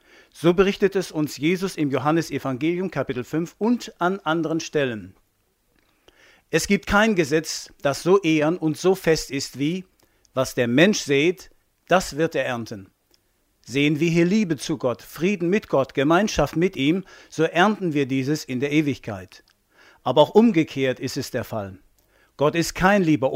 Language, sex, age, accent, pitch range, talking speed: German, male, 50-69, German, 140-180 Hz, 160 wpm